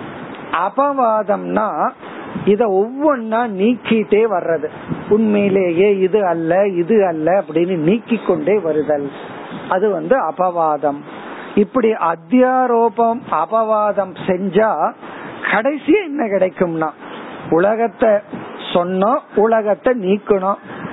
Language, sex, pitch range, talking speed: Tamil, male, 180-240 Hz, 75 wpm